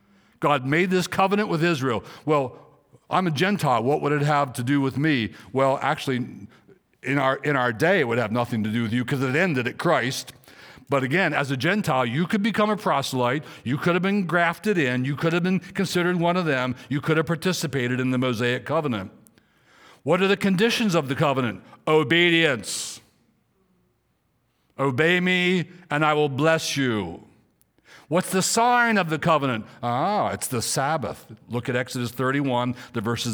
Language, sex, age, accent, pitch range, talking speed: English, male, 60-79, American, 125-165 Hz, 180 wpm